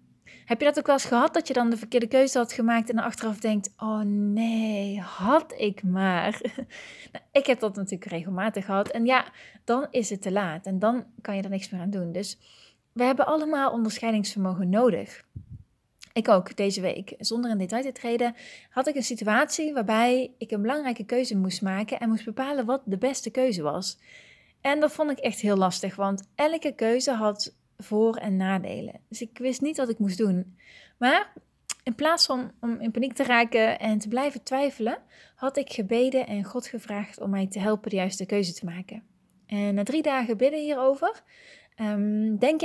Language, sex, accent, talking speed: Dutch, female, Dutch, 195 wpm